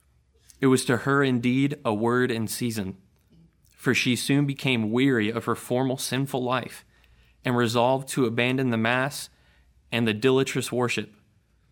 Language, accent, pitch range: English, American, 105-130 Hz